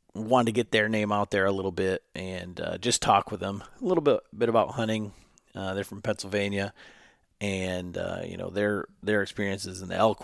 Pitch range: 95-110 Hz